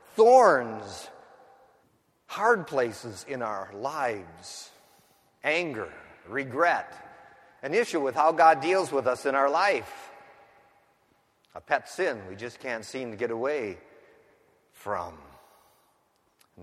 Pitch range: 155-245 Hz